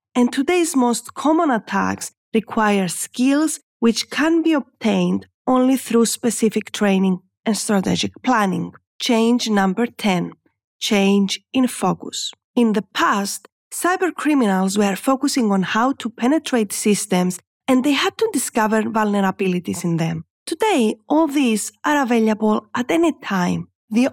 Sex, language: female, English